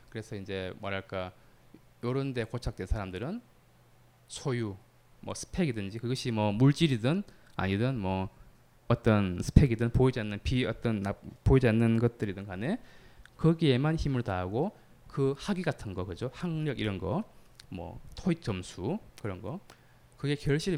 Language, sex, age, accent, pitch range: Korean, male, 20-39, native, 110-165 Hz